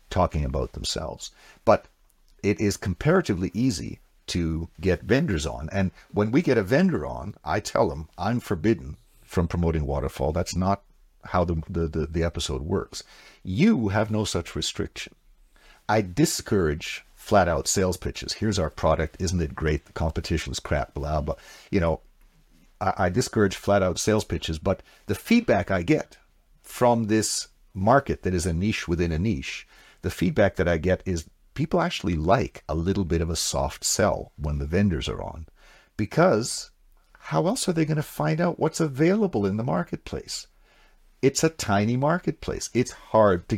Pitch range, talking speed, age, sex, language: 85-115 Hz, 170 wpm, 50-69, male, English